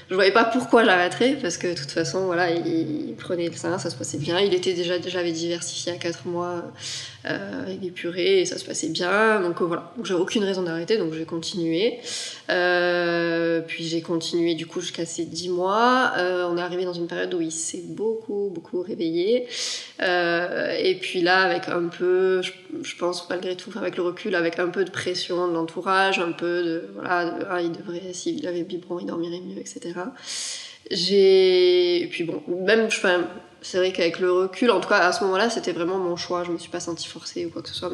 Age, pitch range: 20-39, 170-190 Hz